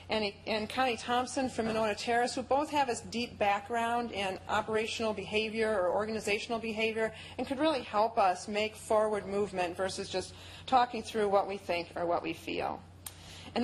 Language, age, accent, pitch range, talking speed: English, 40-59, American, 200-245 Hz, 165 wpm